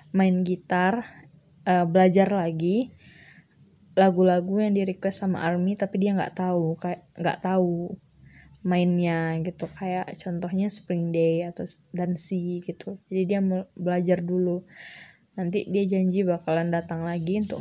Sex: female